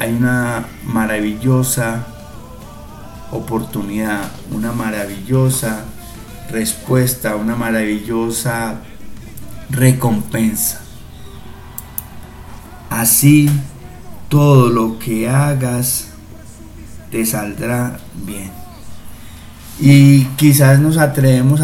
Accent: Mexican